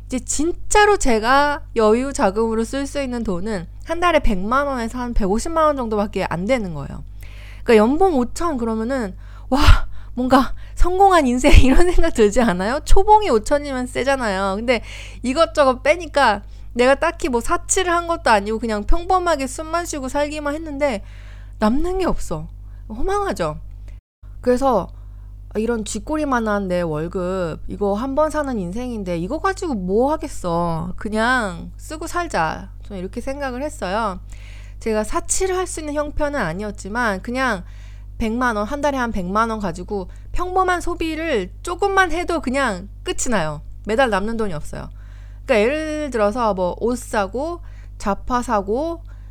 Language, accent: Korean, native